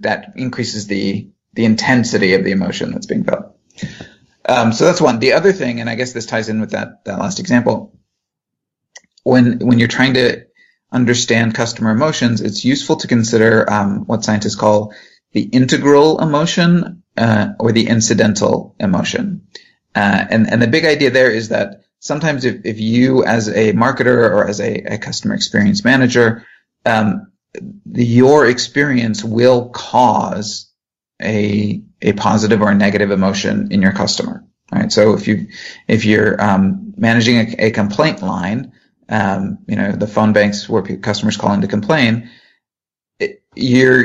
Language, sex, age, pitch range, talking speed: English, male, 30-49, 110-140 Hz, 160 wpm